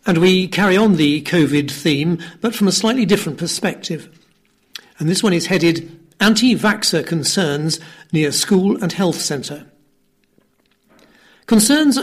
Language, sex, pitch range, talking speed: English, male, 160-205 Hz, 135 wpm